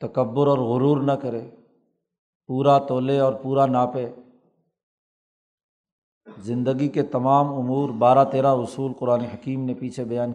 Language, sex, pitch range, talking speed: Urdu, male, 125-145 Hz, 130 wpm